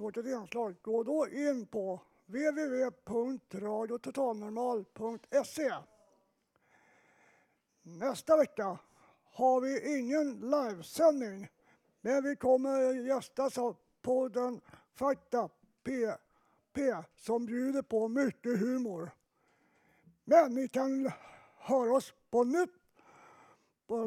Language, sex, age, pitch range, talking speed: Swedish, male, 60-79, 225-280 Hz, 85 wpm